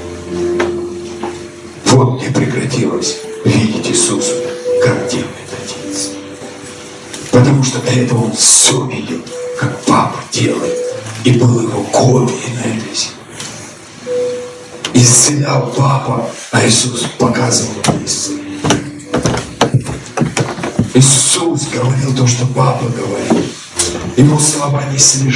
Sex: male